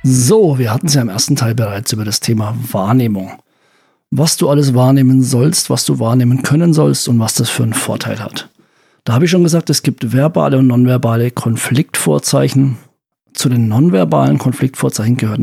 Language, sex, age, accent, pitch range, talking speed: German, male, 50-69, German, 120-150 Hz, 180 wpm